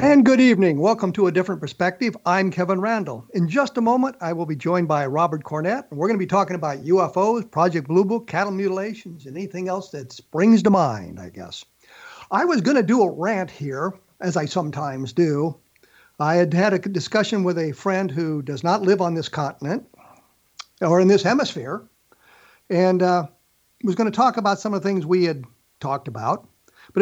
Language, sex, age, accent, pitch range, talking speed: English, male, 60-79, American, 155-205 Hz, 205 wpm